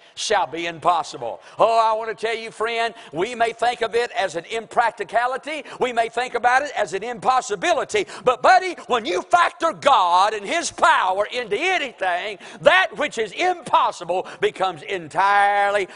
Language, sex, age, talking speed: English, male, 50-69, 160 wpm